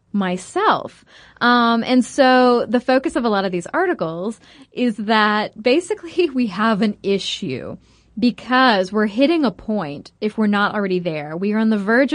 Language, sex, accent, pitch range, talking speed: English, female, American, 195-255 Hz, 170 wpm